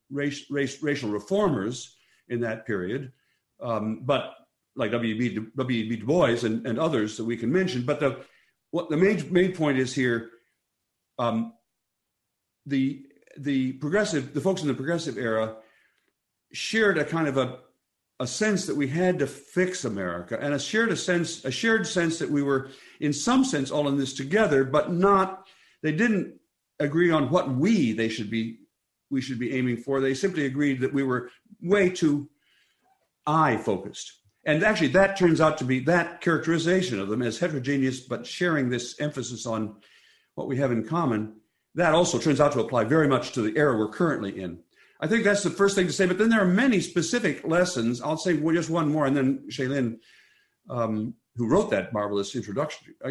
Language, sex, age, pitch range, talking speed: English, male, 50-69, 115-170 Hz, 185 wpm